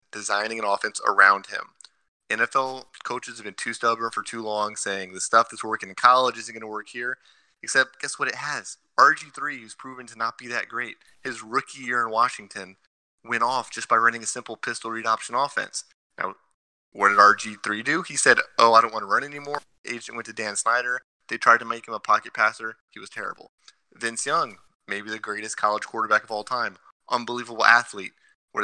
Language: English